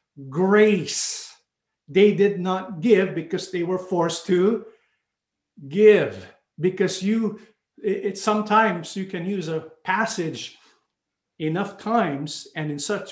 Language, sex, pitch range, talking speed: English, male, 165-205 Hz, 120 wpm